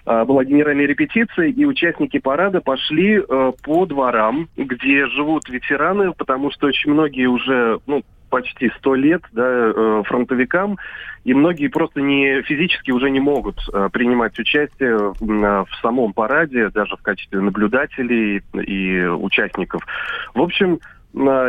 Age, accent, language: 30-49, native, Russian